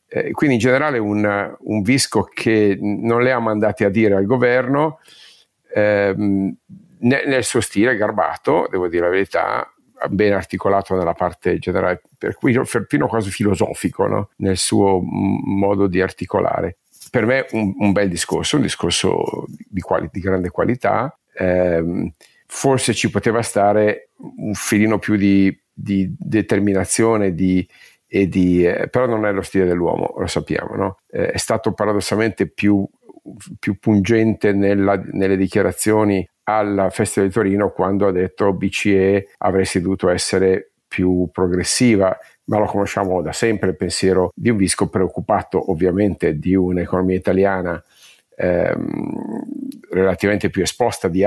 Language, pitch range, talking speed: Italian, 95-110 Hz, 140 wpm